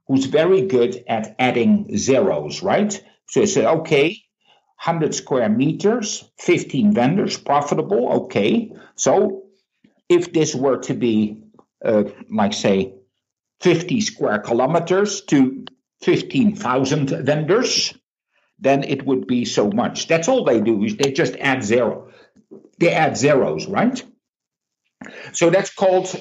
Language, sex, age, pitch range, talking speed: English, male, 60-79, 125-200 Hz, 125 wpm